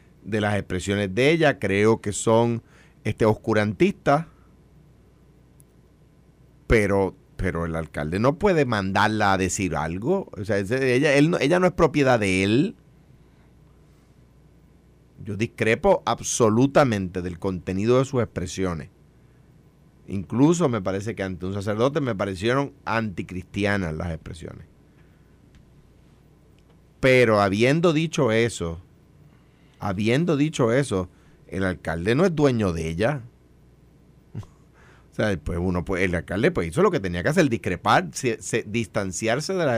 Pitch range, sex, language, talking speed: 95-125 Hz, male, Spanish, 130 wpm